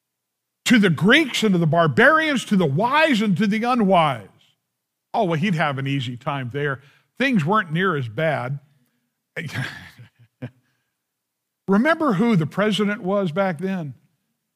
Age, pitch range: 50-69, 150-220 Hz